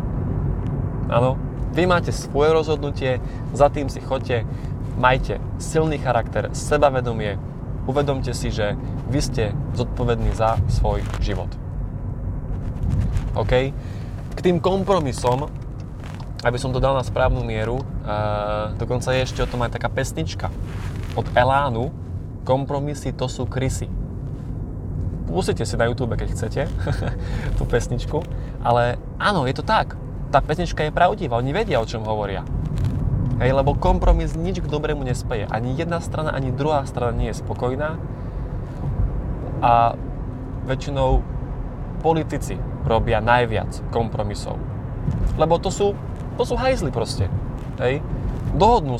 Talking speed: 120 wpm